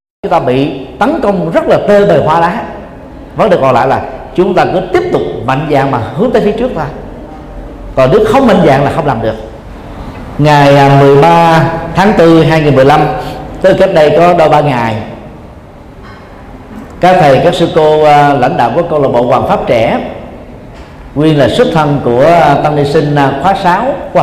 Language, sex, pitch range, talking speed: Vietnamese, male, 140-175 Hz, 190 wpm